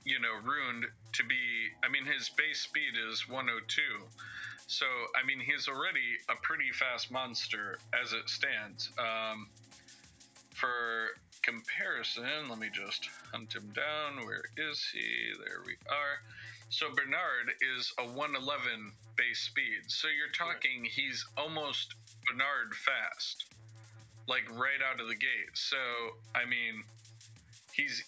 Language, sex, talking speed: English, male, 135 wpm